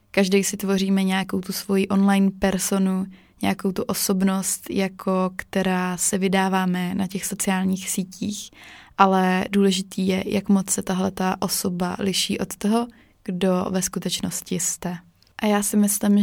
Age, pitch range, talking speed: 20-39, 185-200 Hz, 140 wpm